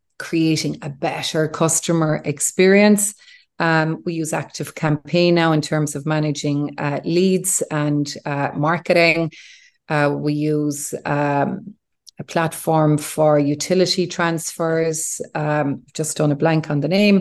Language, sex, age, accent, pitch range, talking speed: English, female, 40-59, Irish, 155-185 Hz, 130 wpm